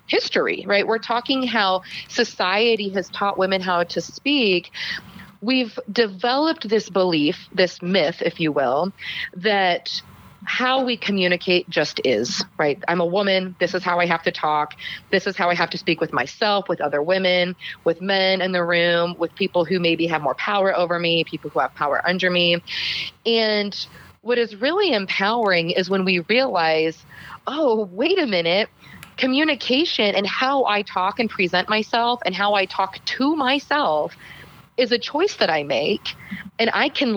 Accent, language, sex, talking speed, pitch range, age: American, English, female, 170 wpm, 175-240 Hz, 30-49